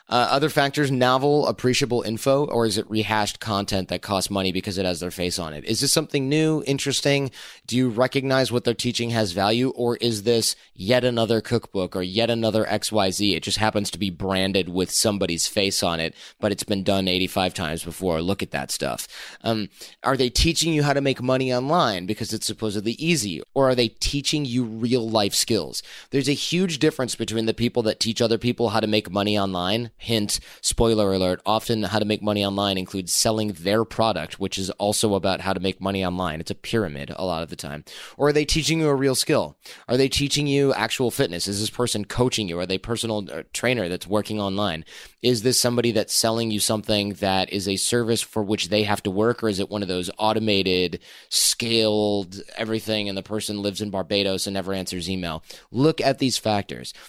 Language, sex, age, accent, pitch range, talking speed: English, male, 30-49, American, 95-125 Hz, 210 wpm